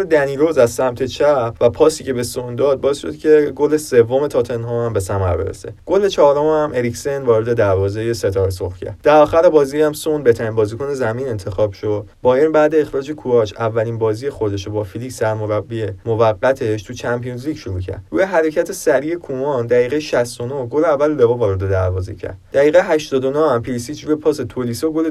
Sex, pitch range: male, 110-155 Hz